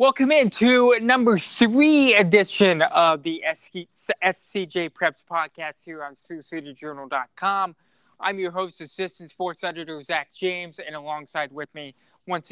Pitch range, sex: 150-185 Hz, male